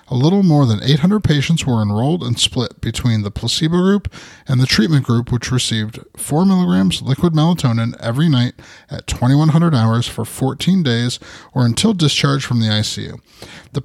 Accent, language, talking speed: American, English, 170 wpm